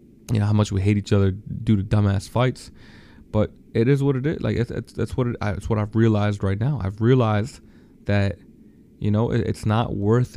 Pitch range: 105-130 Hz